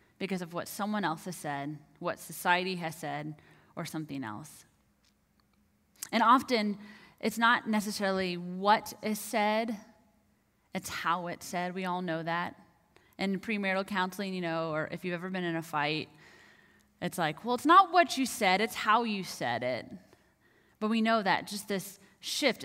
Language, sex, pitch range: English, female, 170-215 Hz